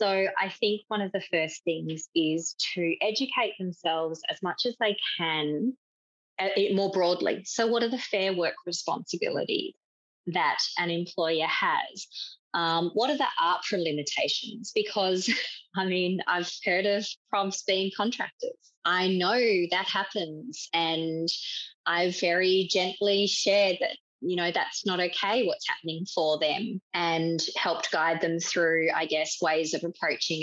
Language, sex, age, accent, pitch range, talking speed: English, female, 20-39, Australian, 165-210 Hz, 145 wpm